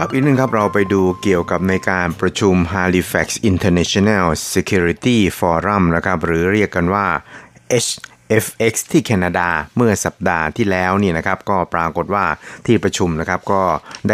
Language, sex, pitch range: Thai, male, 85-105 Hz